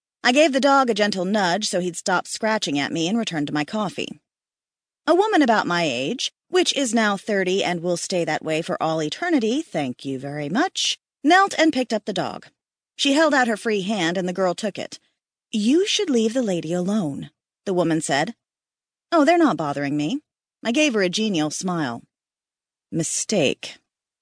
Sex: female